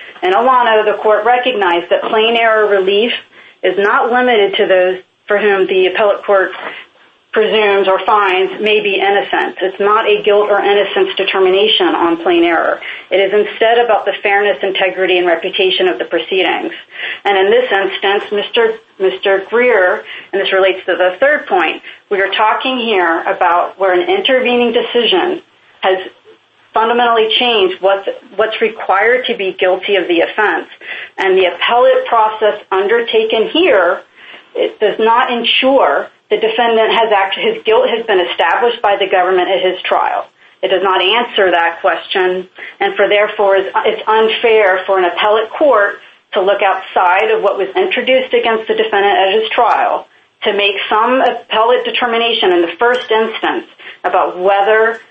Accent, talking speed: American, 160 wpm